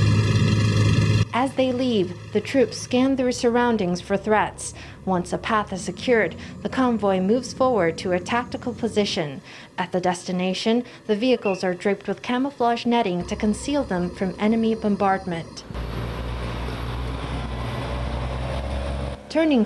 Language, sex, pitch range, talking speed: English, female, 185-230 Hz, 120 wpm